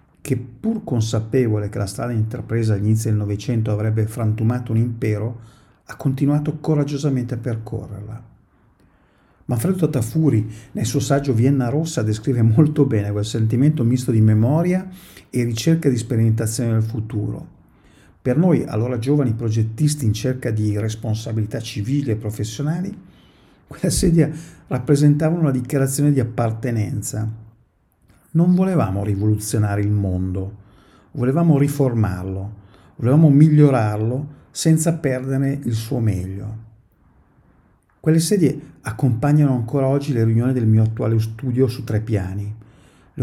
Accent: native